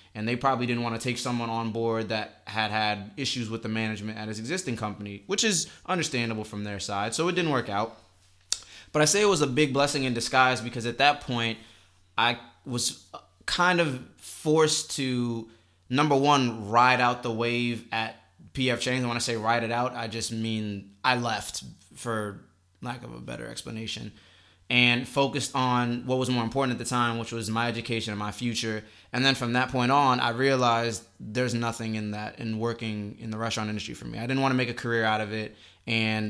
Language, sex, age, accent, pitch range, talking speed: English, male, 20-39, American, 110-125 Hz, 210 wpm